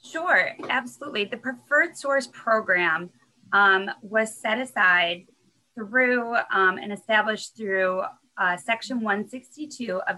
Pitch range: 185-220 Hz